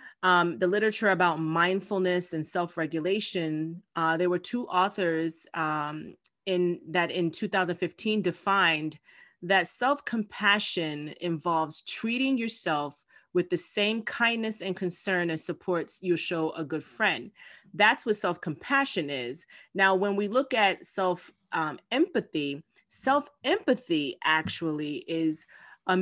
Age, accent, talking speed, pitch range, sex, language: 30-49, American, 120 wpm, 165-215 Hz, female, English